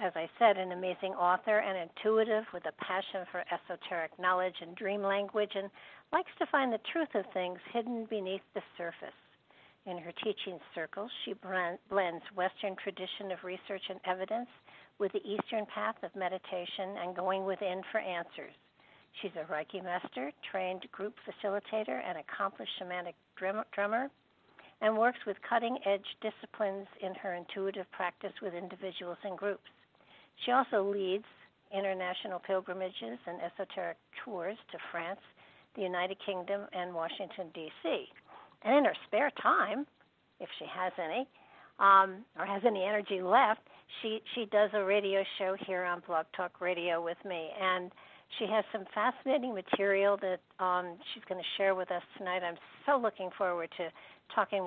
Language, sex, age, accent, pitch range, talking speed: English, female, 60-79, American, 180-210 Hz, 155 wpm